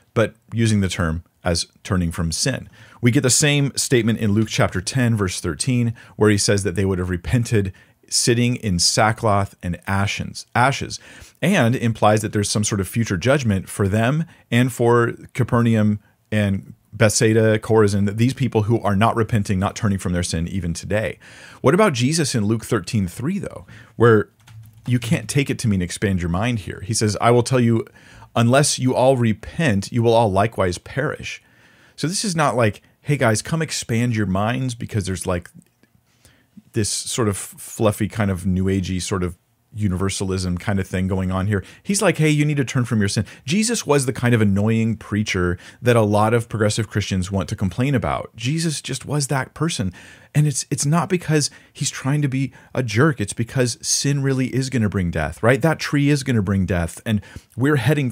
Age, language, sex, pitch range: 40-59, English, male, 100-130 Hz